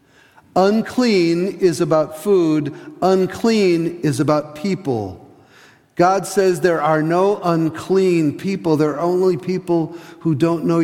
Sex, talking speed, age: male, 120 wpm, 50-69